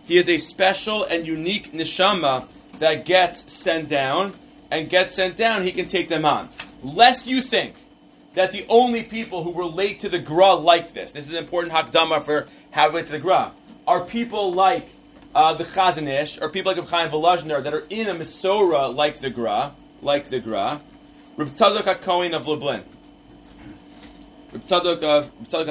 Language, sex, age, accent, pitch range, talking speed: English, male, 30-49, American, 140-180 Hz, 170 wpm